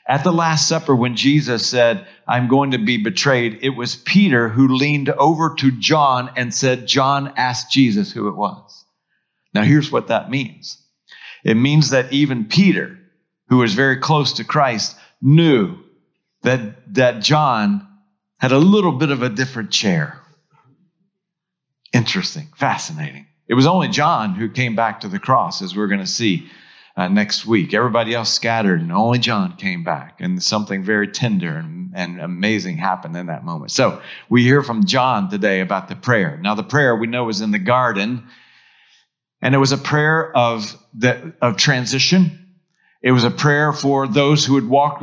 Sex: male